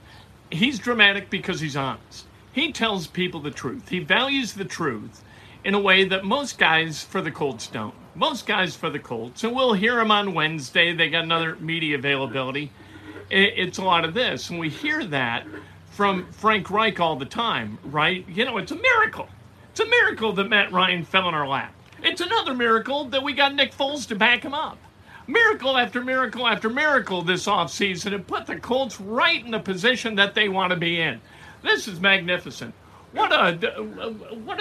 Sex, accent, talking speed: male, American, 190 wpm